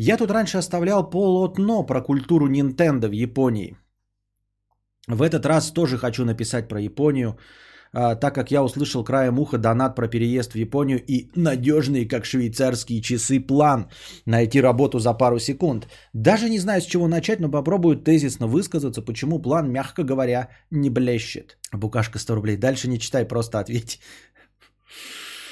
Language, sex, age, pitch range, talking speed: Bulgarian, male, 20-39, 110-155 Hz, 150 wpm